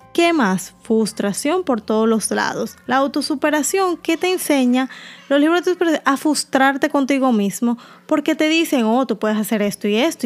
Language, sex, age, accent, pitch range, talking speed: Spanish, female, 10-29, American, 210-300 Hz, 165 wpm